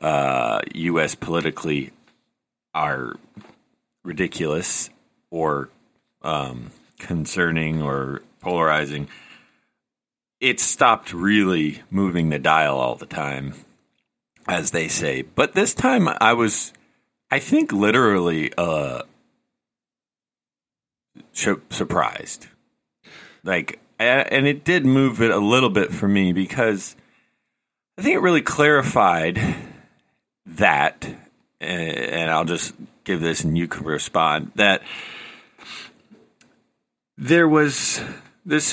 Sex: male